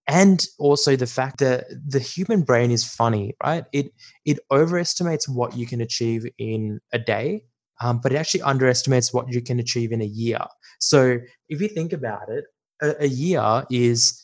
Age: 20-39